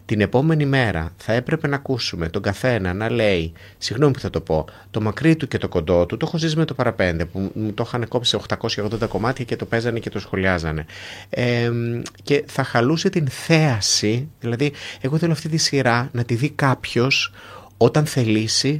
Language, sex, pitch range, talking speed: Greek, male, 105-135 Hz, 190 wpm